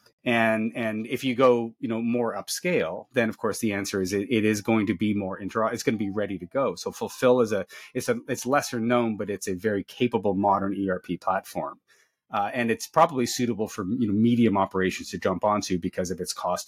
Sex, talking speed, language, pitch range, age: male, 230 wpm, English, 100-120 Hz, 30-49